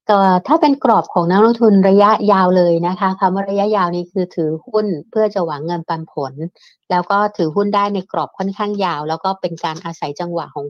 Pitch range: 160-190 Hz